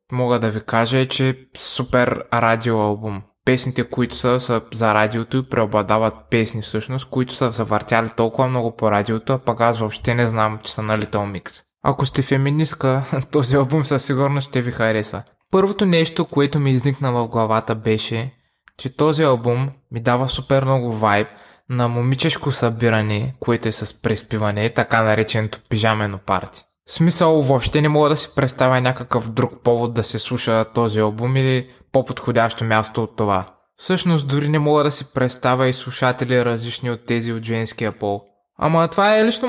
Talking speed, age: 170 wpm, 20-39